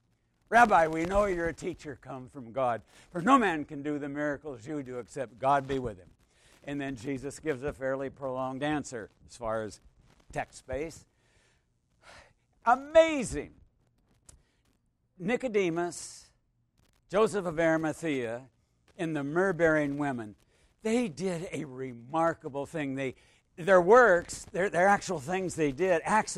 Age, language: 60-79, English